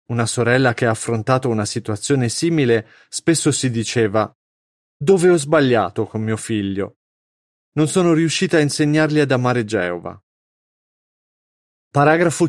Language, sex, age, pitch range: Italian, male, 30-49, 110-145 Hz